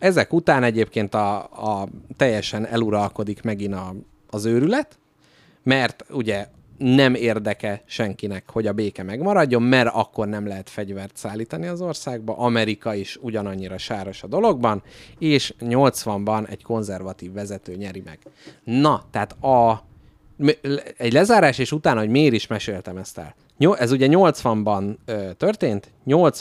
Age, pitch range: 30-49, 100-130 Hz